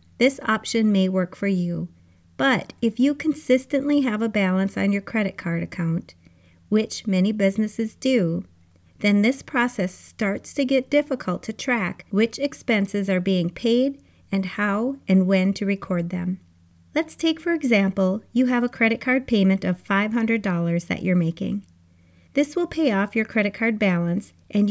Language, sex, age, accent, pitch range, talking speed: English, female, 30-49, American, 180-235 Hz, 165 wpm